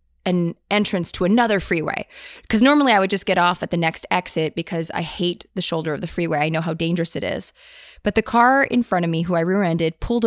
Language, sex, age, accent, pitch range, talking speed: English, female, 20-39, American, 165-215 Hz, 240 wpm